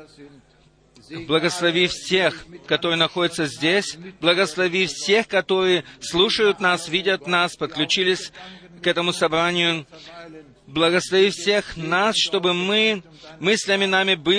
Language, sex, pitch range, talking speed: Russian, male, 140-185 Hz, 90 wpm